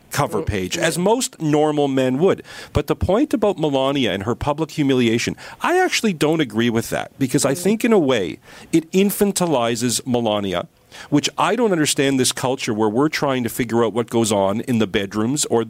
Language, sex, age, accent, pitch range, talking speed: English, male, 50-69, American, 120-155 Hz, 190 wpm